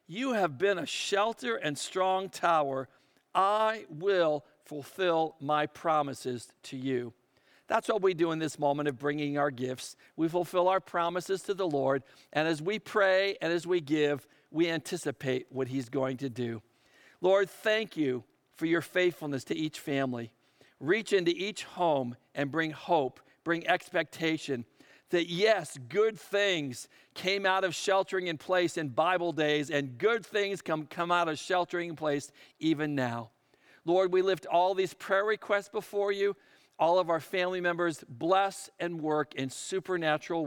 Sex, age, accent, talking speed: male, 50-69, American, 165 wpm